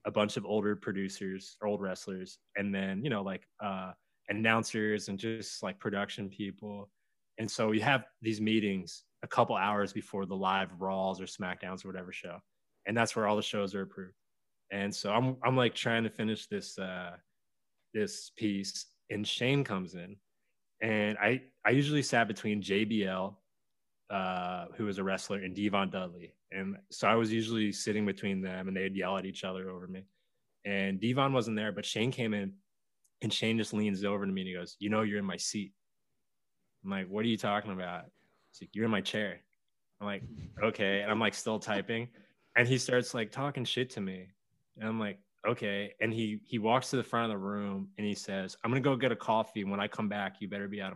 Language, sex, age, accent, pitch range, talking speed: English, male, 20-39, American, 95-110 Hz, 210 wpm